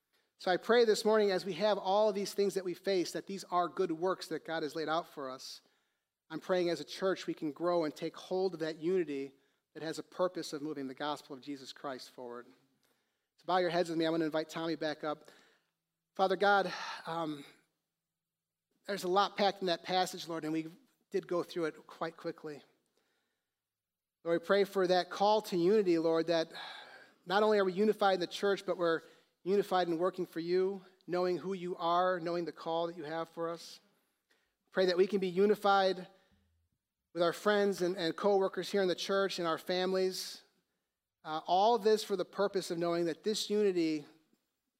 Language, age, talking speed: English, 40-59, 205 wpm